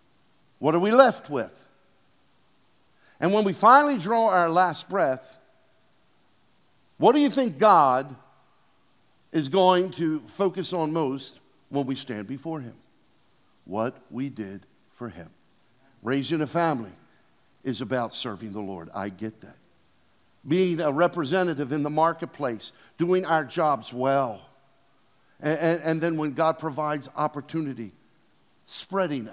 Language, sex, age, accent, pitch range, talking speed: English, male, 50-69, American, 125-170 Hz, 130 wpm